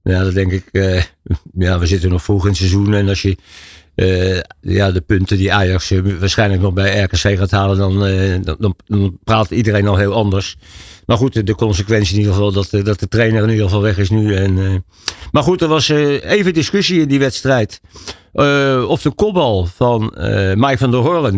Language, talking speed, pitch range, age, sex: Dutch, 215 wpm, 95-120 Hz, 60-79, male